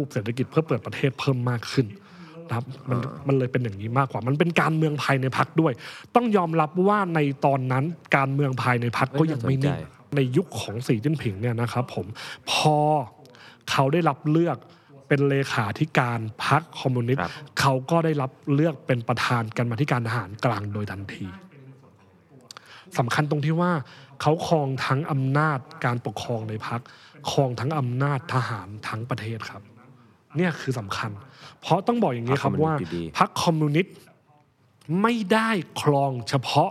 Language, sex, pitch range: Thai, male, 125-155 Hz